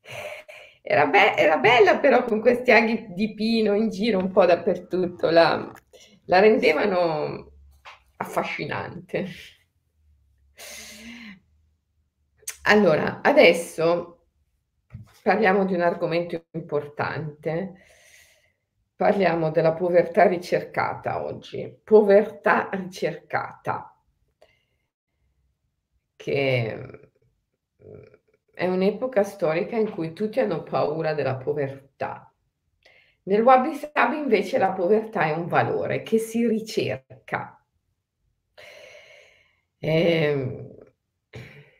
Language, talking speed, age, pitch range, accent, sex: Italian, 80 wpm, 50-69, 150-215 Hz, native, female